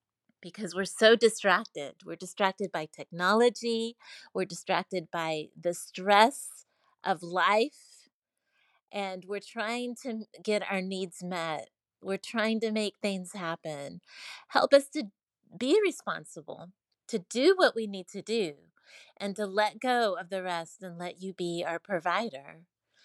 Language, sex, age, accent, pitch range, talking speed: English, female, 30-49, American, 185-225 Hz, 140 wpm